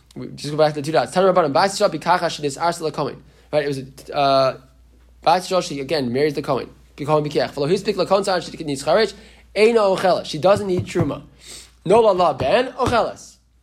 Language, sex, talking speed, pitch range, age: English, male, 165 wpm, 140-190 Hz, 20-39